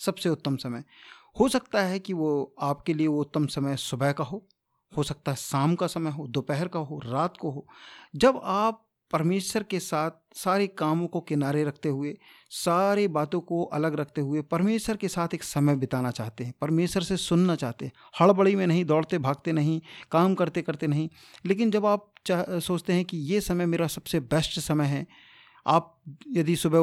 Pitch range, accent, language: 145-185 Hz, native, Hindi